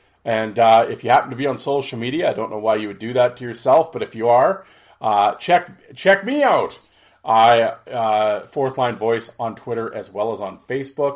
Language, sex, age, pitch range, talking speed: English, male, 40-59, 115-150 Hz, 220 wpm